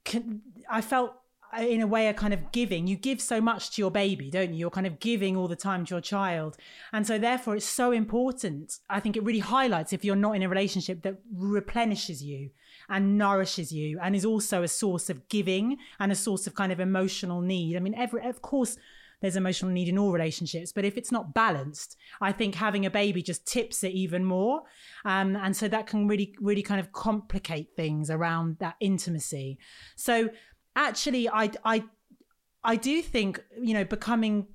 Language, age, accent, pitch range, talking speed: English, 30-49, British, 185-230 Hz, 200 wpm